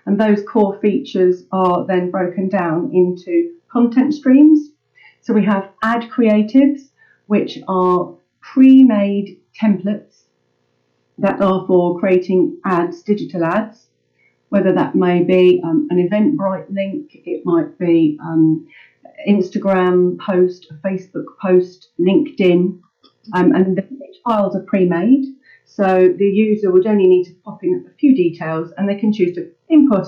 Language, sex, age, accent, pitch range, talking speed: English, female, 40-59, British, 180-250 Hz, 135 wpm